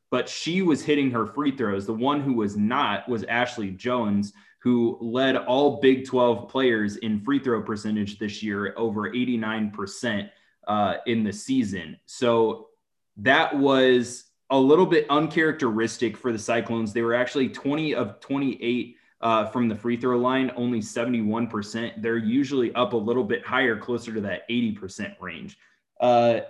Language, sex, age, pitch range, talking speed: English, male, 20-39, 110-130 Hz, 160 wpm